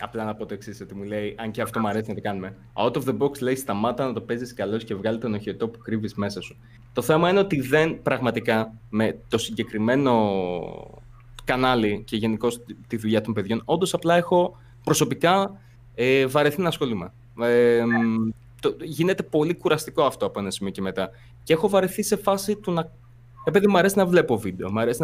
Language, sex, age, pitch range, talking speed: Greek, male, 20-39, 110-150 Hz, 200 wpm